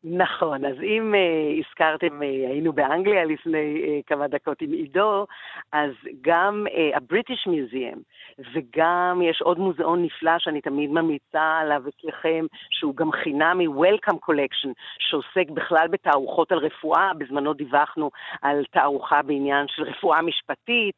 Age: 50-69